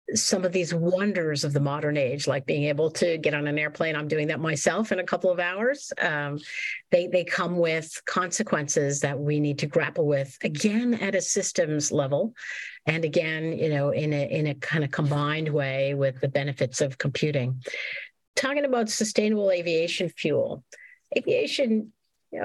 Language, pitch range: English, 155-225 Hz